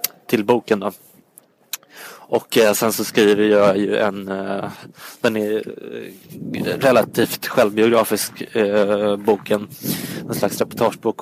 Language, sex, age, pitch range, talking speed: English, male, 20-39, 100-110 Hz, 110 wpm